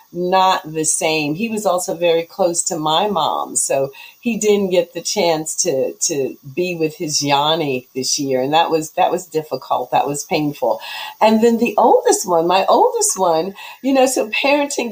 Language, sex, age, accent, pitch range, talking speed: English, female, 40-59, American, 185-275 Hz, 185 wpm